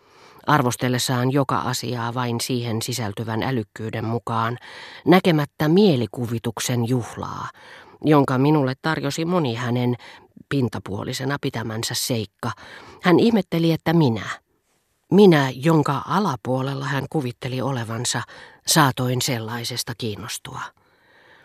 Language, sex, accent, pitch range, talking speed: Finnish, female, native, 115-145 Hz, 90 wpm